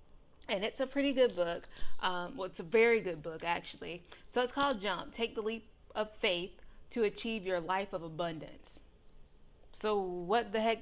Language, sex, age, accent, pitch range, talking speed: English, female, 20-39, American, 165-210 Hz, 185 wpm